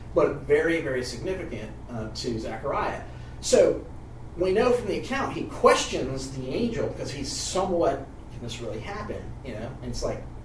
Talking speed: 165 wpm